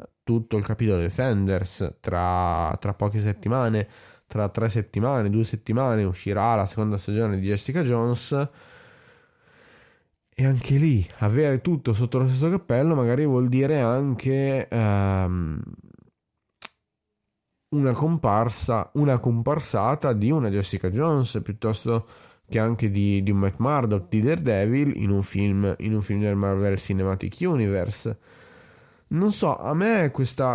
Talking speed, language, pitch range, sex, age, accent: 135 wpm, Italian, 100-125 Hz, male, 20-39, native